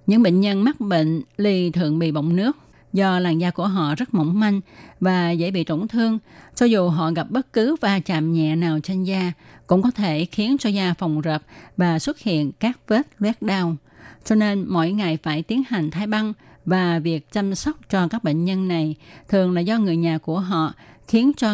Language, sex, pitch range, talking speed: Vietnamese, female, 165-210 Hz, 215 wpm